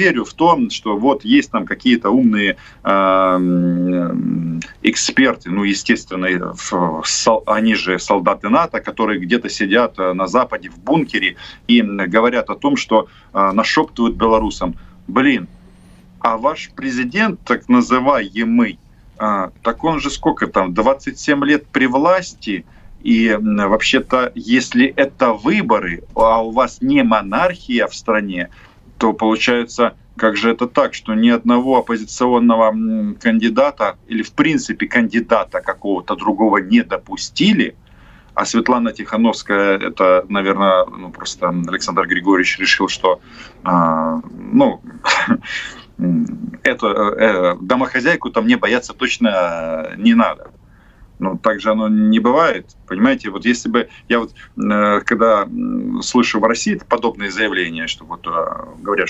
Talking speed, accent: 125 wpm, native